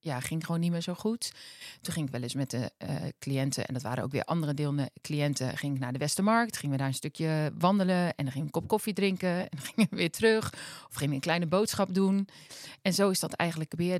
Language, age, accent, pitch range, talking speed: Dutch, 40-59, Dutch, 150-195 Hz, 265 wpm